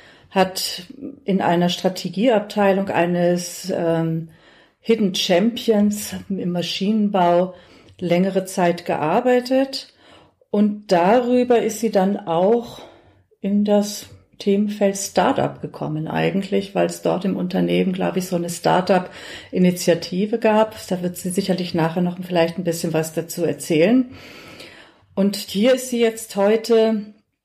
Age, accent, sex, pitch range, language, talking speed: 40-59, German, female, 175-215 Hz, German, 120 wpm